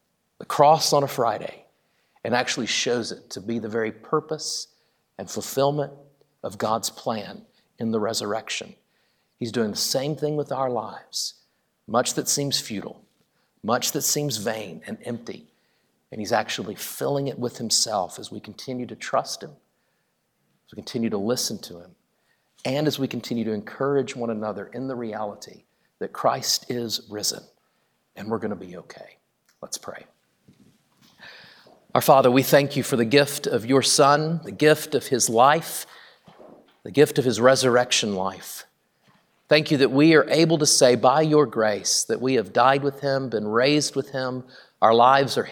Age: 50-69